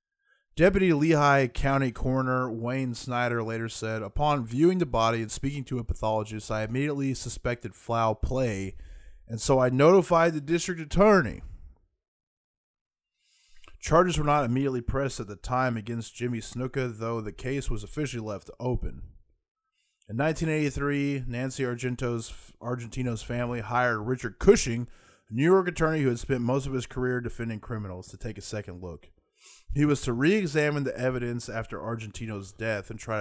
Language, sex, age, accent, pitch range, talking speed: English, male, 20-39, American, 110-140 Hz, 155 wpm